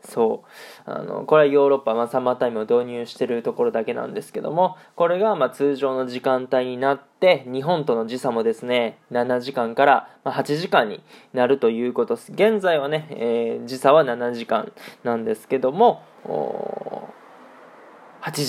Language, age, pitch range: Japanese, 20-39, 130-165 Hz